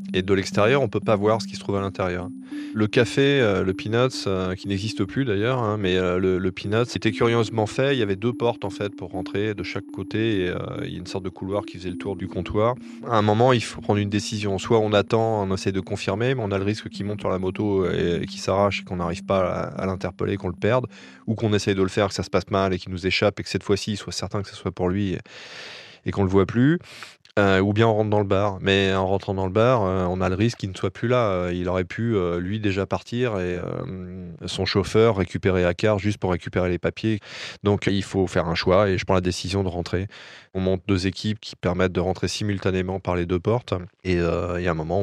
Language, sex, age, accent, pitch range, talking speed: French, male, 20-39, French, 90-105 Hz, 280 wpm